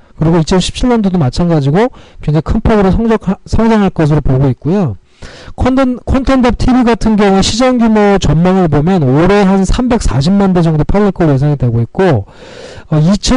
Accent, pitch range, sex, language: native, 145-205 Hz, male, Korean